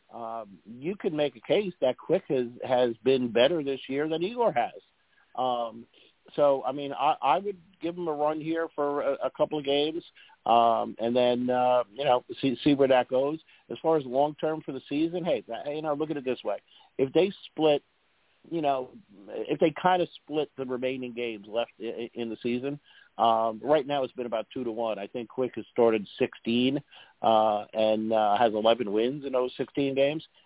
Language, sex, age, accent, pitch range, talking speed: English, male, 50-69, American, 120-155 Hz, 210 wpm